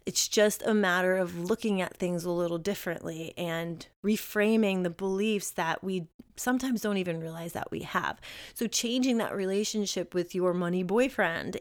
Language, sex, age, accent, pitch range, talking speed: English, female, 30-49, American, 185-225 Hz, 165 wpm